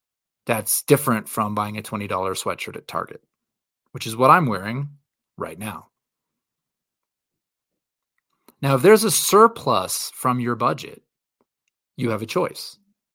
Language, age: English, 30-49